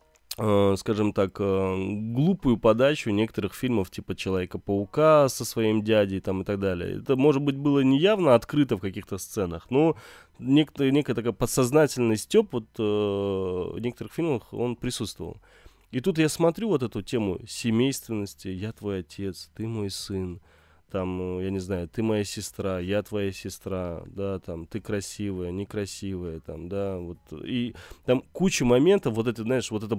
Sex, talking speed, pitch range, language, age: male, 155 wpm, 95-130 Hz, Russian, 20-39